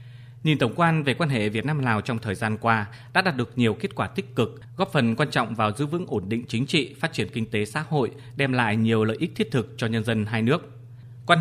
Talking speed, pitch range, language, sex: 270 wpm, 115-140 Hz, Vietnamese, male